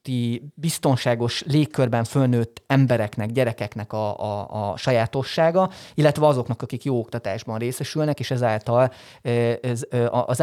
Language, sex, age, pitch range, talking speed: Hungarian, male, 30-49, 120-140 Hz, 105 wpm